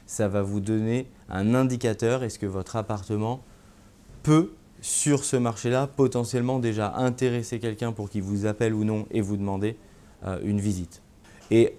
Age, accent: 20-39, French